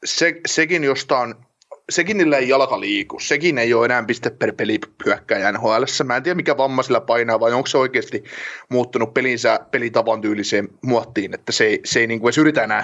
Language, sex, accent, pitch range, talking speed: Finnish, male, native, 130-180 Hz, 185 wpm